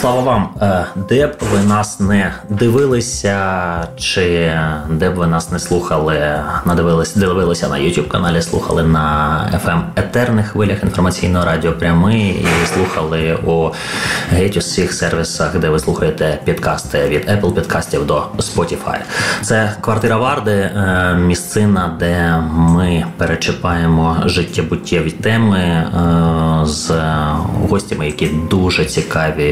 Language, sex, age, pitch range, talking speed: Ukrainian, male, 20-39, 80-95 Hz, 115 wpm